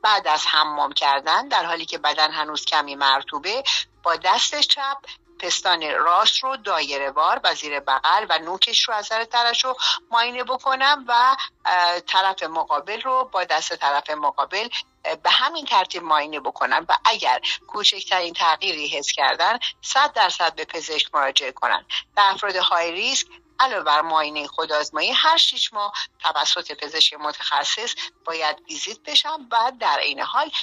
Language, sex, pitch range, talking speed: Persian, female, 150-255 Hz, 150 wpm